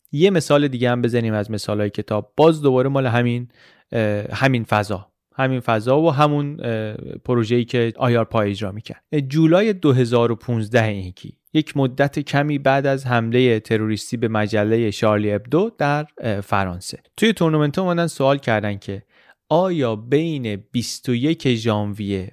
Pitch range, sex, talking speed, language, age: 115-145 Hz, male, 130 wpm, Persian, 30-49